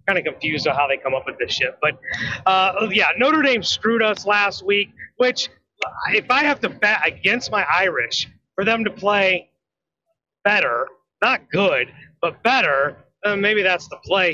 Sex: male